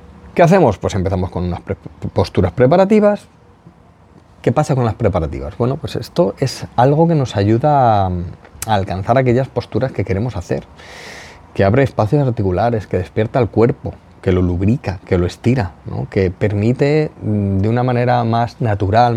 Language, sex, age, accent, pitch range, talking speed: Spanish, male, 30-49, Spanish, 100-130 Hz, 160 wpm